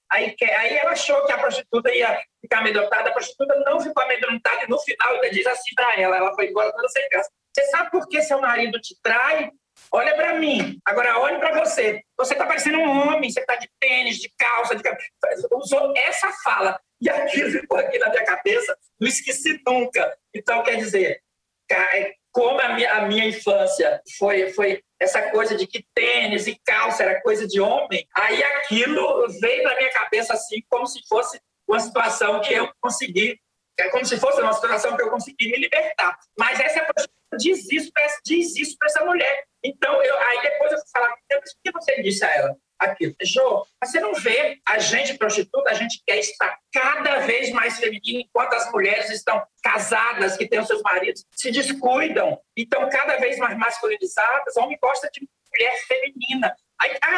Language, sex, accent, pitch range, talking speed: Portuguese, male, Brazilian, 225-300 Hz, 185 wpm